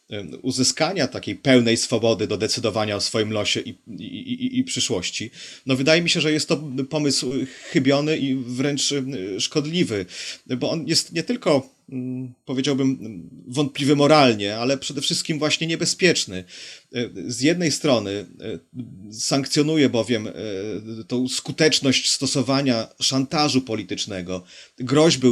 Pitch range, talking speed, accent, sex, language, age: 115-150 Hz, 115 wpm, native, male, Polish, 30-49